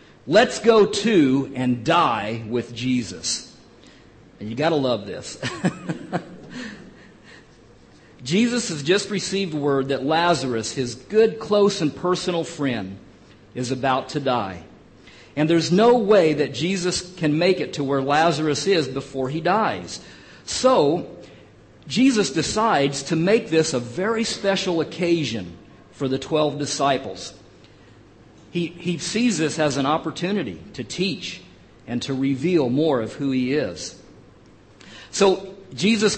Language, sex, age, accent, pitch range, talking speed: English, male, 50-69, American, 130-195 Hz, 130 wpm